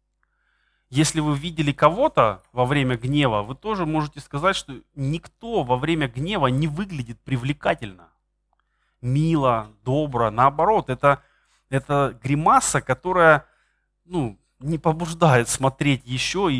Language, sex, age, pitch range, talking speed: Russian, male, 20-39, 125-160 Hz, 115 wpm